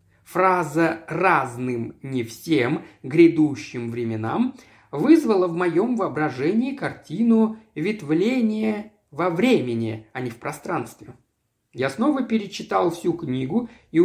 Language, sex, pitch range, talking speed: Russian, male, 145-220 Hz, 105 wpm